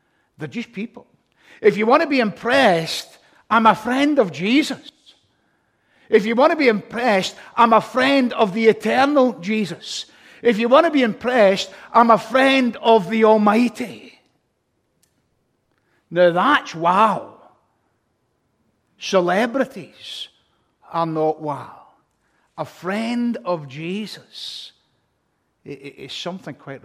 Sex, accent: male, British